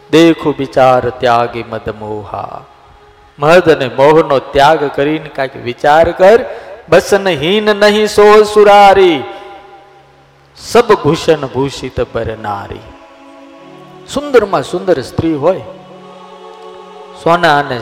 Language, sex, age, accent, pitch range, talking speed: Gujarati, male, 50-69, native, 130-185 Hz, 45 wpm